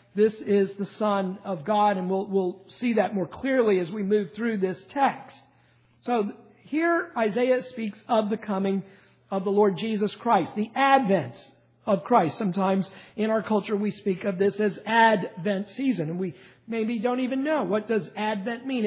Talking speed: 180 wpm